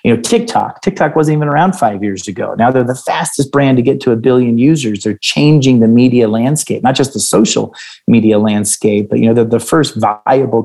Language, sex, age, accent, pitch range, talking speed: English, male, 30-49, American, 110-125 Hz, 220 wpm